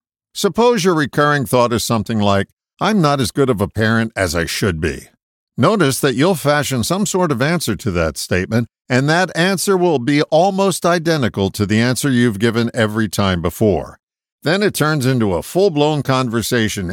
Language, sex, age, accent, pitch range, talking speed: English, male, 50-69, American, 105-160 Hz, 180 wpm